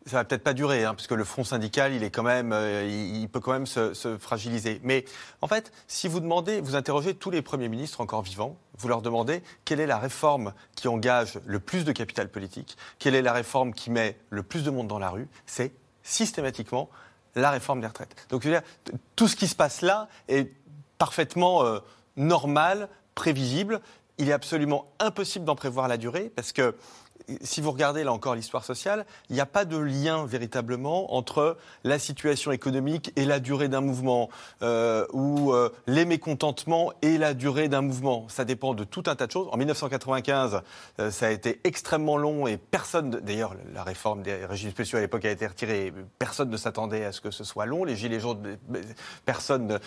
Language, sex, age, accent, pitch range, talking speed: French, male, 30-49, French, 115-150 Hz, 205 wpm